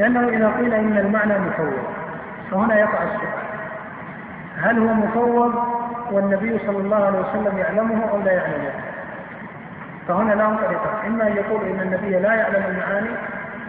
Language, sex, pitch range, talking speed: Arabic, male, 185-215 Hz, 140 wpm